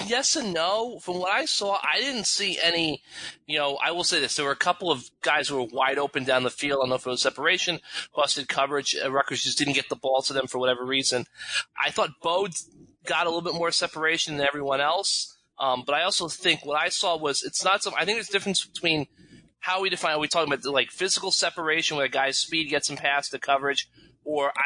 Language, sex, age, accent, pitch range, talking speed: English, male, 20-39, American, 135-160 Hz, 245 wpm